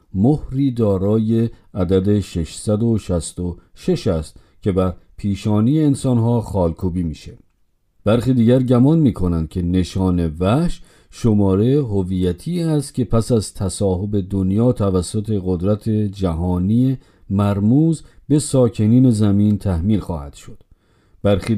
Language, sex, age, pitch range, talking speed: Persian, male, 50-69, 95-125 Hz, 105 wpm